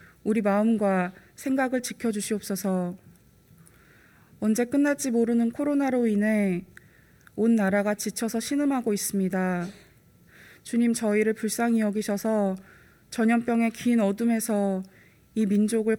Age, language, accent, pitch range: 20-39, Korean, native, 205-235 Hz